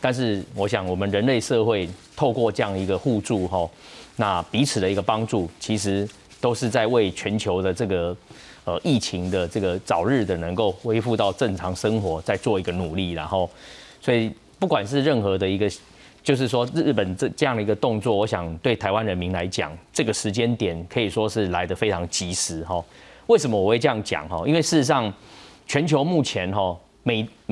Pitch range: 95-125 Hz